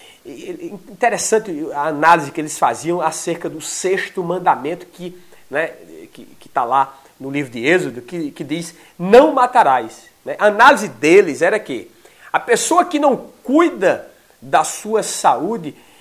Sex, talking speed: male, 140 wpm